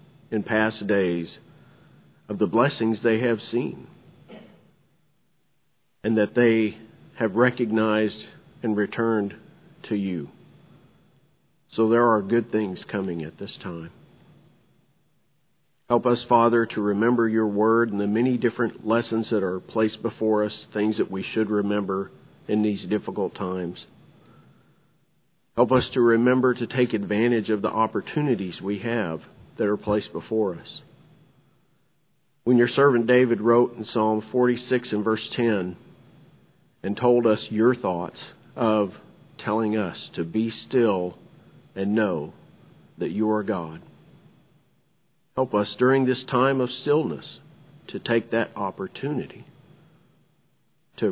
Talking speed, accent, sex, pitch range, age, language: 130 wpm, American, male, 105-125 Hz, 50-69, English